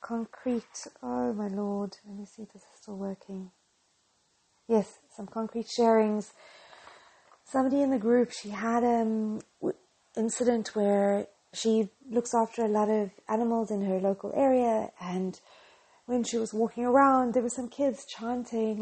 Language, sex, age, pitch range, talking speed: English, female, 30-49, 205-245 Hz, 150 wpm